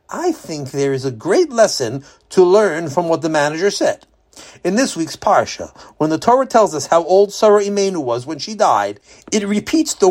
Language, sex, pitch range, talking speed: English, male, 150-220 Hz, 200 wpm